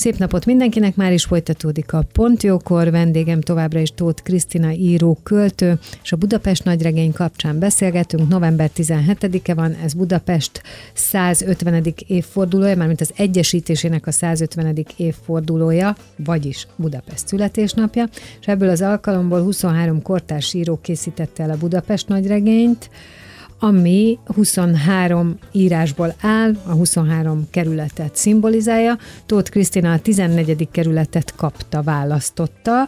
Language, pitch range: Hungarian, 165-195 Hz